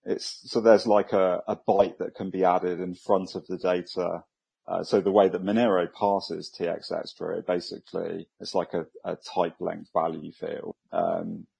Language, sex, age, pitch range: English, male, 30-49, 95-115 Hz